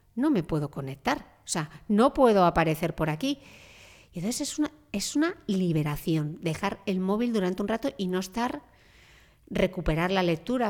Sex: female